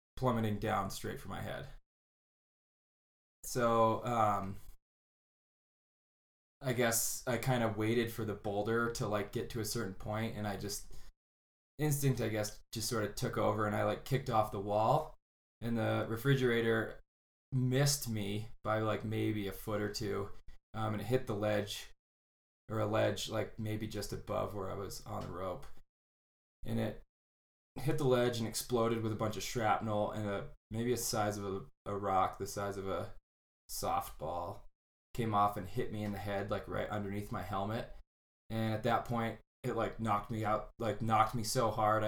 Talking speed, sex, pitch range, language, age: 180 wpm, male, 100-115 Hz, English, 20-39